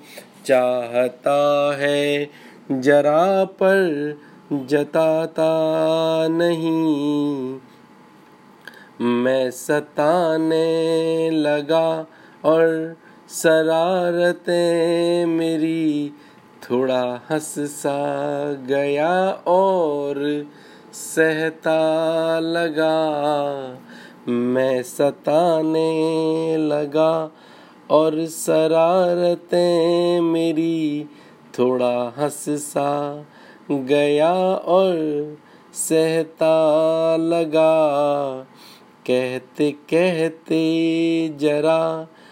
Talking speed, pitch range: 45 wpm, 145-165 Hz